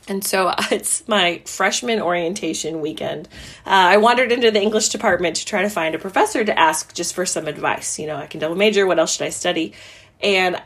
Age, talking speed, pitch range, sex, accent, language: 20-39, 215 wpm, 175-225 Hz, female, American, English